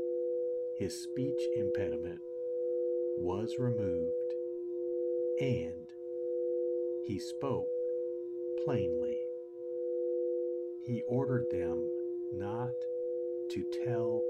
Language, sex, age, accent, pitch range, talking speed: English, male, 60-79, American, 120-165 Hz, 65 wpm